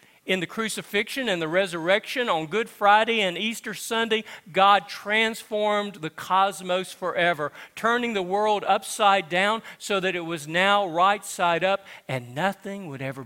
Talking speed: 155 wpm